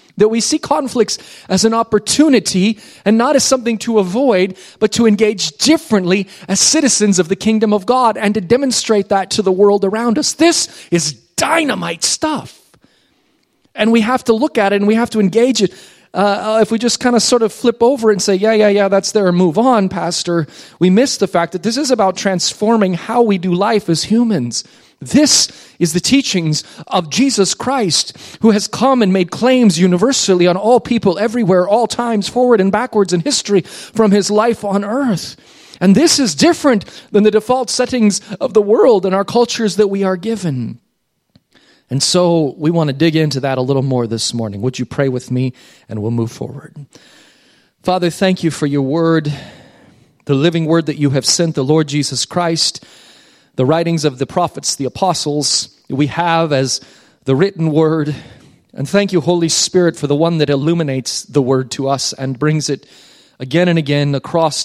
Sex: male